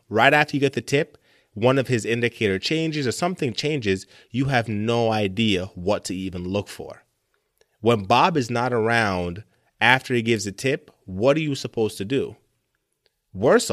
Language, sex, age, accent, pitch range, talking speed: English, male, 30-49, American, 100-130 Hz, 175 wpm